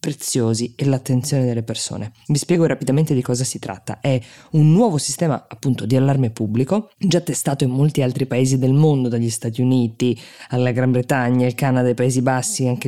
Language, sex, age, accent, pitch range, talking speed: Italian, female, 20-39, native, 130-170 Hz, 185 wpm